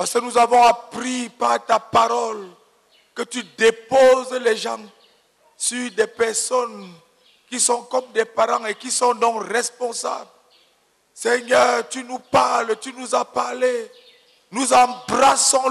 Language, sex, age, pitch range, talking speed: English, male, 50-69, 235-290 Hz, 140 wpm